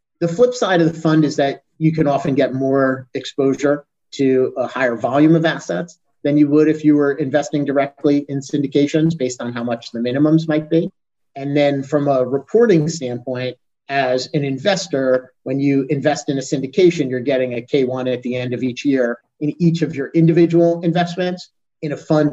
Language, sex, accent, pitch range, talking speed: English, male, American, 130-160 Hz, 195 wpm